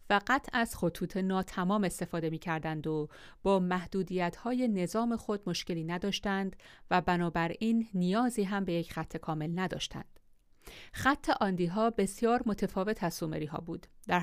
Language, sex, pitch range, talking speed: Persian, female, 175-215 Hz, 140 wpm